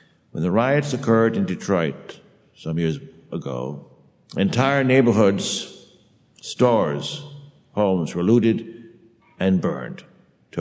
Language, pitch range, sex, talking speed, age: English, 105-150 Hz, male, 100 wpm, 60-79